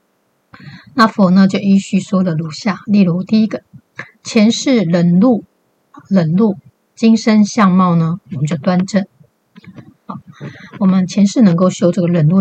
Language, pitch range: Chinese, 170-205 Hz